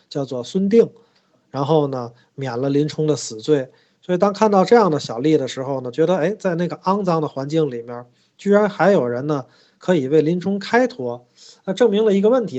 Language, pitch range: Chinese, 130-185 Hz